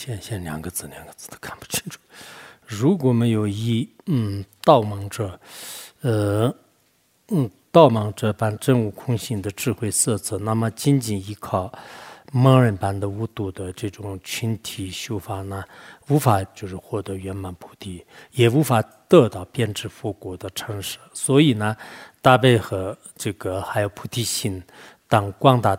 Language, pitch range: English, 100-125 Hz